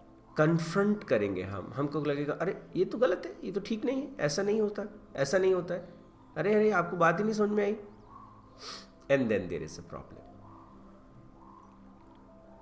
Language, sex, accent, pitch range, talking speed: Hindi, male, native, 100-155 Hz, 160 wpm